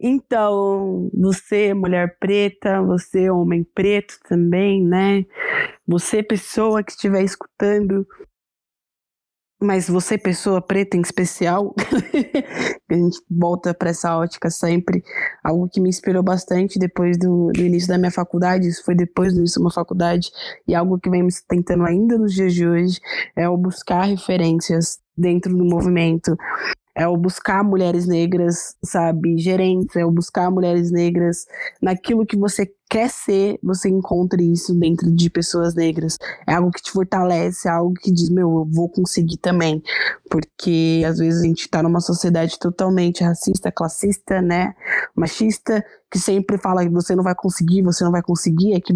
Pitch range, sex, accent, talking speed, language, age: 175-195 Hz, female, Brazilian, 155 wpm, Portuguese, 20-39